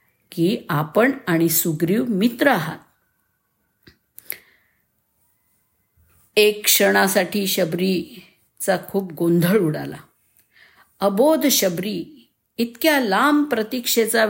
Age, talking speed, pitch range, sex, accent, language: 50-69, 70 wpm, 175-245 Hz, female, native, Marathi